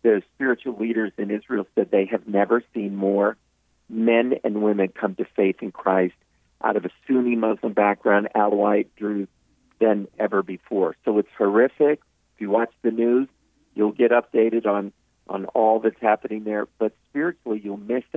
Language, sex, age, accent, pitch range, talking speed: English, male, 50-69, American, 100-125 Hz, 170 wpm